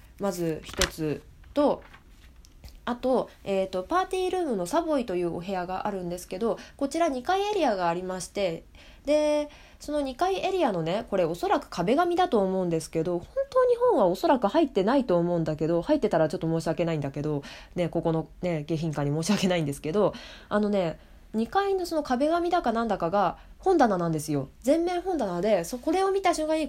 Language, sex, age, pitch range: Japanese, female, 20-39, 175-285 Hz